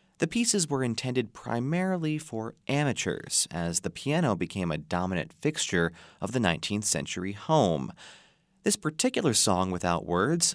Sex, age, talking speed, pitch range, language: male, 30-49, 135 wpm, 95-155 Hz, English